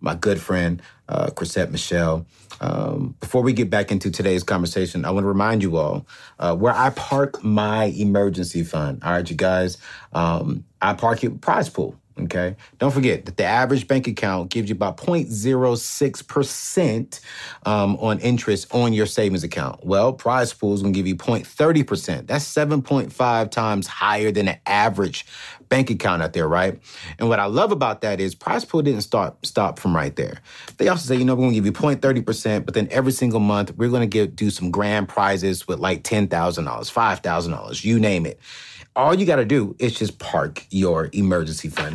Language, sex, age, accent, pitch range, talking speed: English, male, 40-59, American, 100-130 Hz, 185 wpm